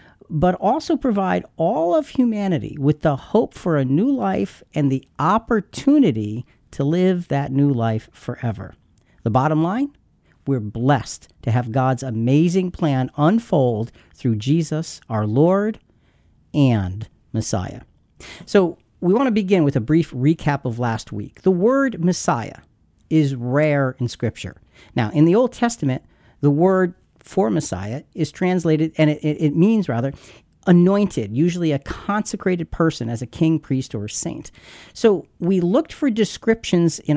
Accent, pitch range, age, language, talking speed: American, 130-185 Hz, 50-69, English, 145 wpm